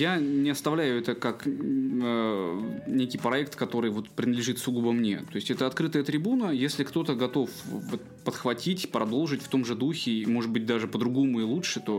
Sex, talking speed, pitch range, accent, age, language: male, 175 wpm, 115-160 Hz, native, 20-39, Russian